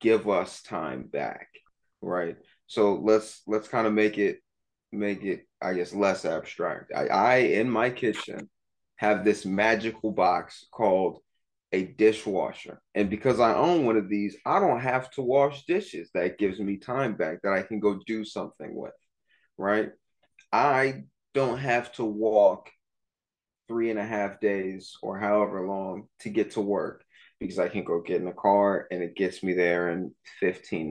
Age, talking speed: 20-39, 170 wpm